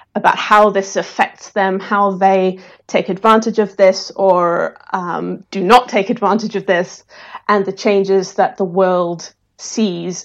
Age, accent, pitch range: 30-49, British, 185-210 Hz